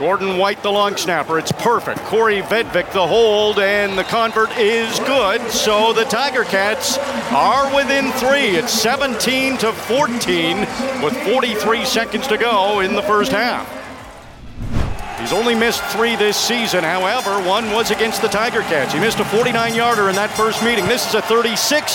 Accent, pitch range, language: American, 190-240 Hz, English